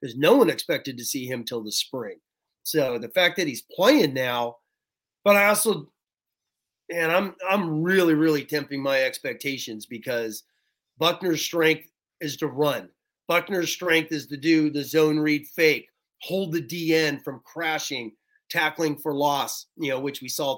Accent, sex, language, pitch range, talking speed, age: American, male, English, 140-170 Hz, 165 wpm, 30-49